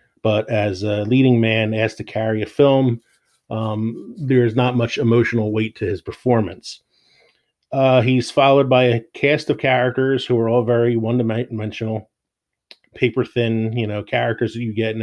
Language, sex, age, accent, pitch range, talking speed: English, male, 30-49, American, 105-120 Hz, 170 wpm